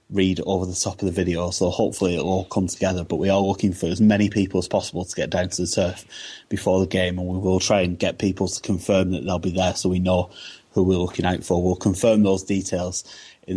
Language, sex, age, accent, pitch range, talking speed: English, male, 30-49, British, 90-100 Hz, 260 wpm